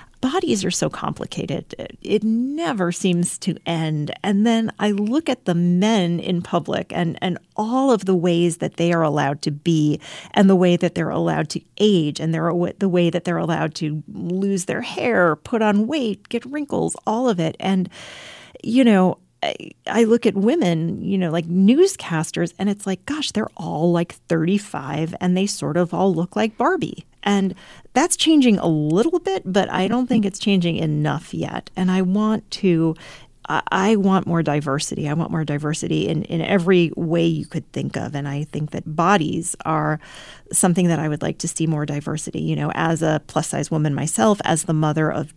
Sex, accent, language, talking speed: female, American, English, 190 wpm